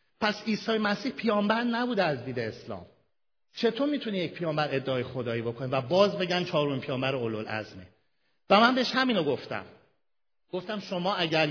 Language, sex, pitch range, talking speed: Persian, male, 135-205 Hz, 150 wpm